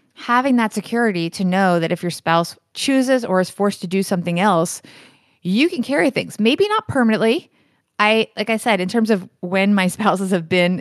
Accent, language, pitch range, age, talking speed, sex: American, English, 175-220 Hz, 30-49, 200 wpm, female